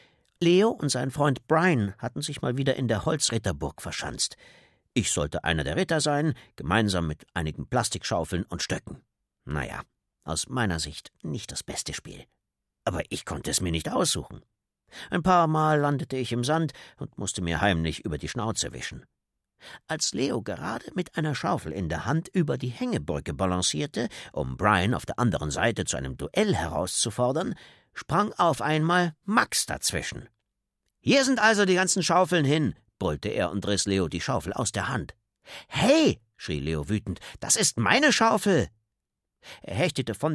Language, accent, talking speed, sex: German, German, 165 wpm, male